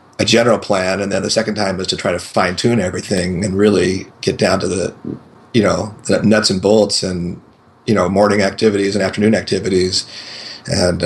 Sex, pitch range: male, 95-110 Hz